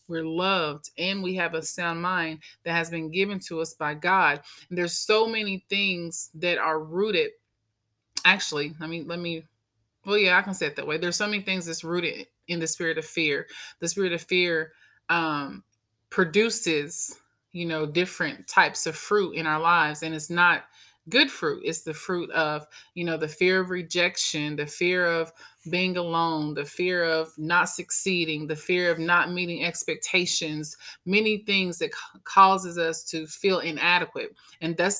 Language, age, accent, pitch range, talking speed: English, 20-39, American, 160-185 Hz, 180 wpm